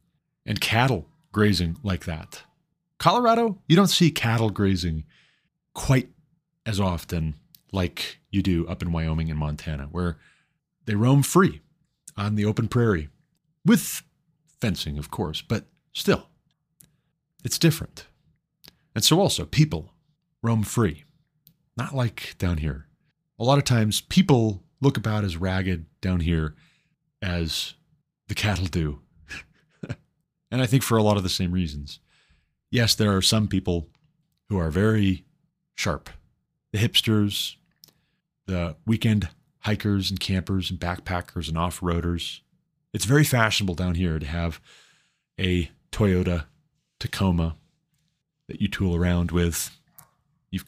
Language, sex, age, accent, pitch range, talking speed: English, male, 30-49, American, 85-140 Hz, 130 wpm